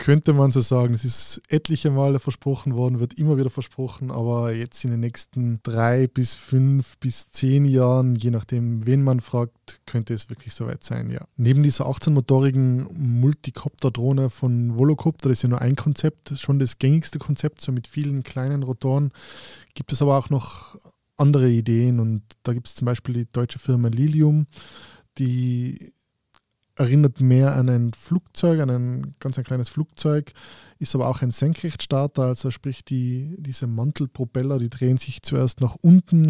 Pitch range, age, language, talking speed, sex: 120-140 Hz, 20-39, German, 170 wpm, male